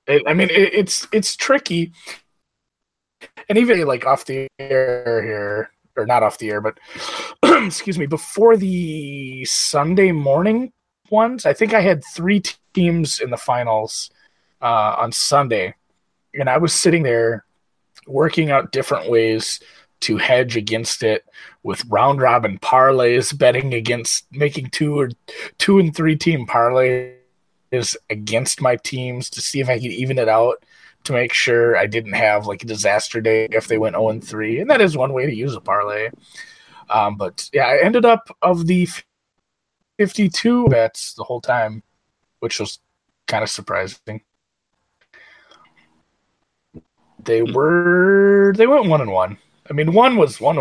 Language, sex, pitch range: English, male, 115-175 Hz